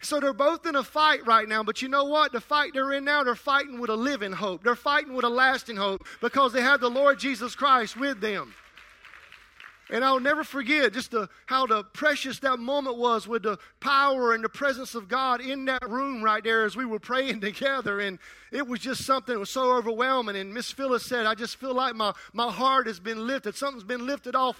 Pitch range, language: 235-275 Hz, English